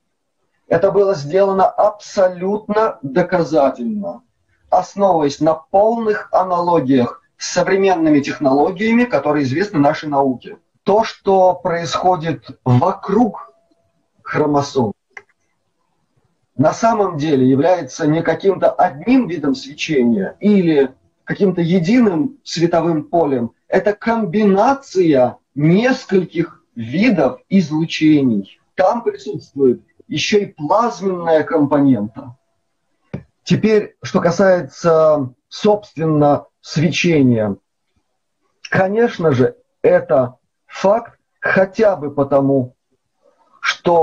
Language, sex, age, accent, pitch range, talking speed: Russian, male, 30-49, native, 145-205 Hz, 80 wpm